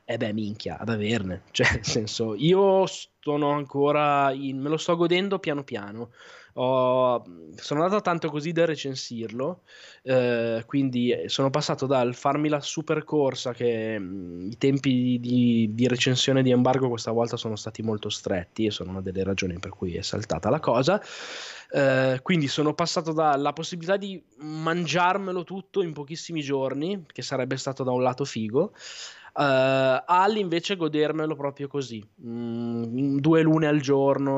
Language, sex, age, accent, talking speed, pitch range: Italian, male, 20-39, native, 155 wpm, 115-140 Hz